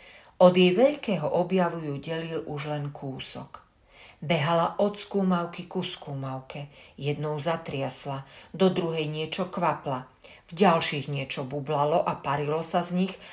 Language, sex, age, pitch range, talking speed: Slovak, female, 40-59, 145-190 Hz, 130 wpm